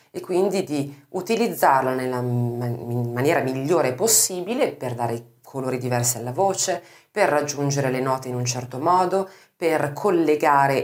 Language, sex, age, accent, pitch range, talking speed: Italian, female, 40-59, native, 125-165 Hz, 145 wpm